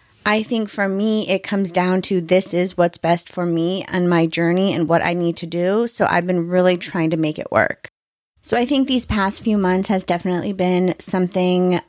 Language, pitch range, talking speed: English, 180-205 Hz, 215 wpm